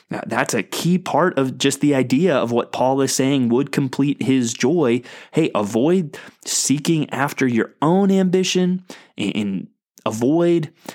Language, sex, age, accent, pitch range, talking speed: English, male, 20-39, American, 120-170 Hz, 150 wpm